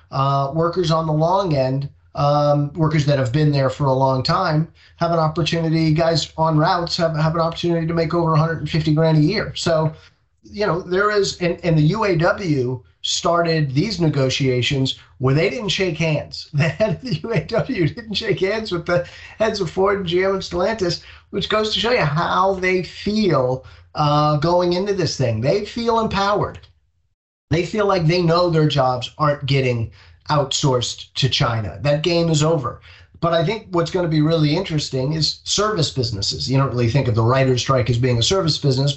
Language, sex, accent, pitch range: English, male, American, 130-170 Hz